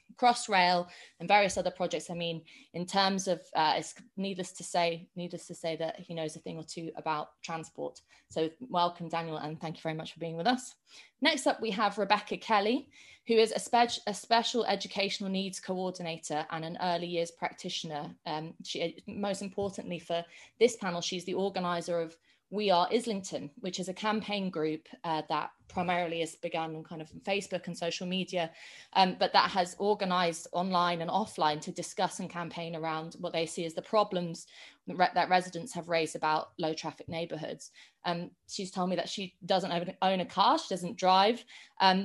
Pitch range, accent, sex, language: 165-195 Hz, British, female, English